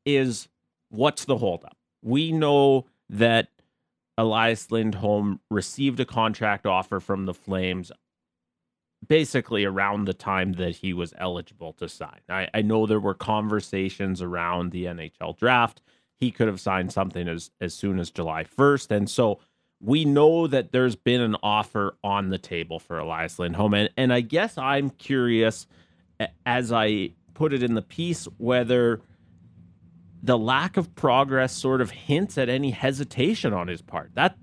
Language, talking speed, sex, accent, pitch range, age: English, 155 wpm, male, American, 95-125 Hz, 30-49